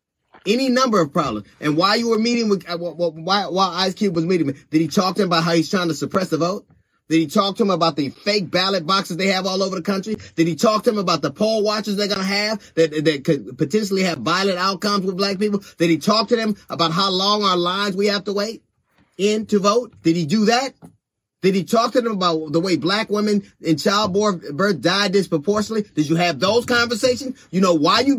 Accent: American